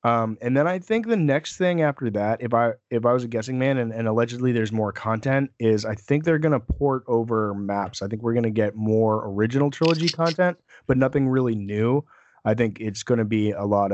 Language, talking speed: English, 235 wpm